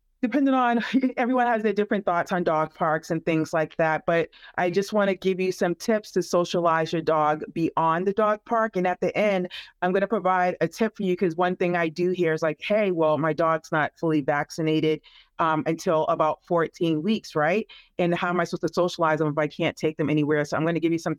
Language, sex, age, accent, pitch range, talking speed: English, female, 30-49, American, 165-200 Hz, 240 wpm